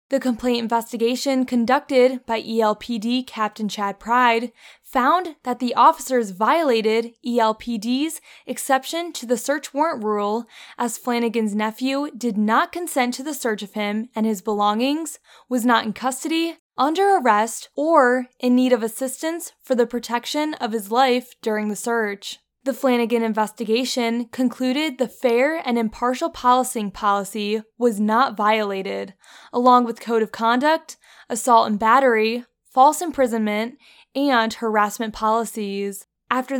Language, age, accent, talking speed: English, 10-29, American, 135 wpm